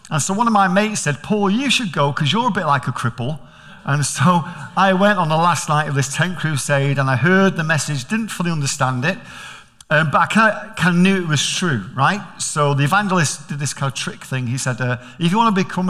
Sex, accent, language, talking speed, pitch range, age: male, British, English, 250 wpm, 140-185 Hz, 50-69